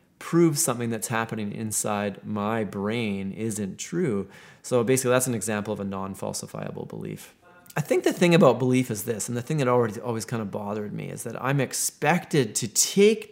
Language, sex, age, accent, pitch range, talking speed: English, male, 30-49, American, 110-135 Hz, 185 wpm